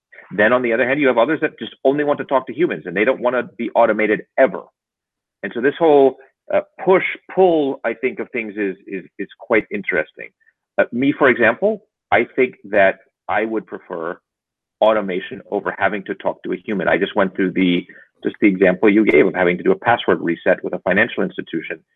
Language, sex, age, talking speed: English, male, 40-59, 215 wpm